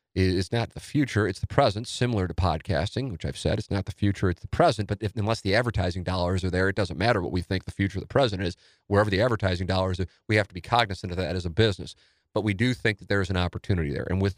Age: 40-59